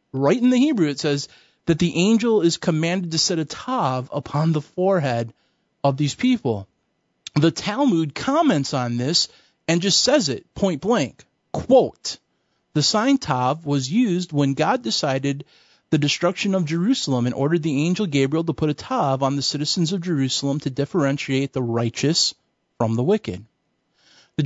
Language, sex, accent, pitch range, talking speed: English, male, American, 140-195 Hz, 165 wpm